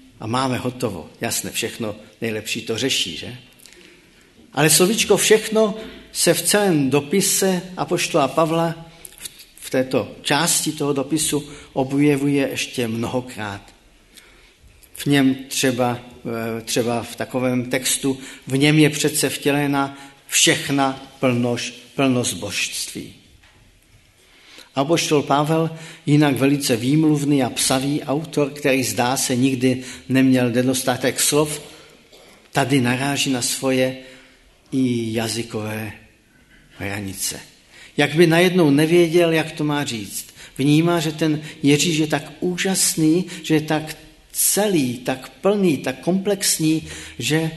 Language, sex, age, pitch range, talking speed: Czech, male, 50-69, 125-160 Hz, 110 wpm